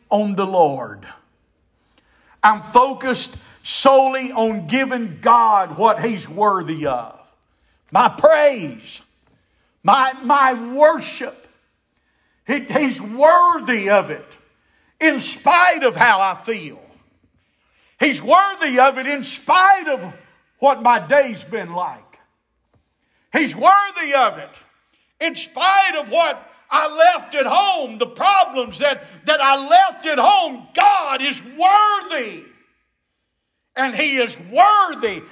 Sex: male